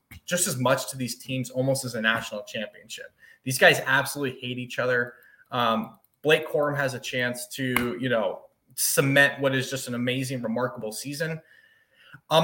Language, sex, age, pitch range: English, male, 20-39, 125-145 Hz